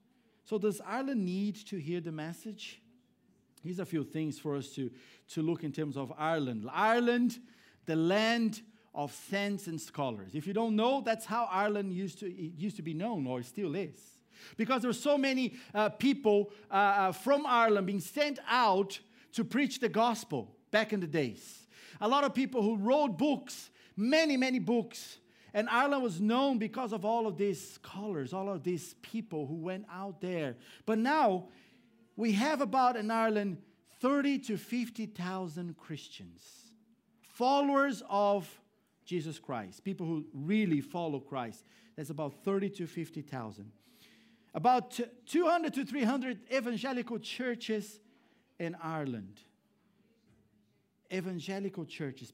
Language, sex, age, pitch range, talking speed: English, male, 50-69, 165-230 Hz, 150 wpm